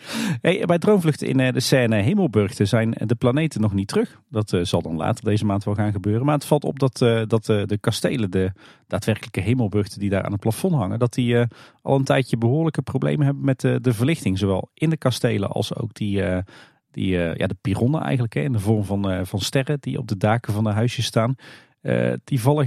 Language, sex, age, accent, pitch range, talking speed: Dutch, male, 40-59, Dutch, 105-135 Hz, 220 wpm